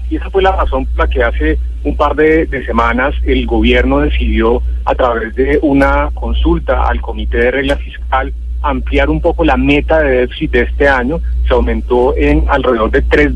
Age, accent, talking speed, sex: 30-49, Colombian, 195 wpm, male